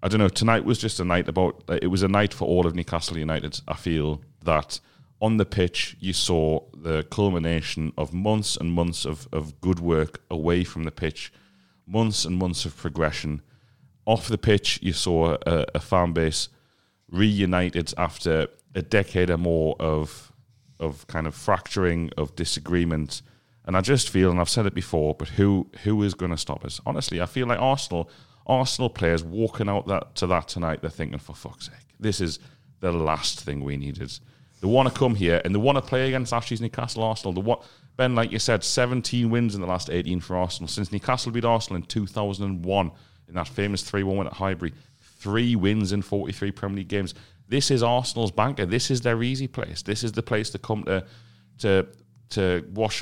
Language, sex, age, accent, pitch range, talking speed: English, male, 30-49, British, 85-115 Hz, 200 wpm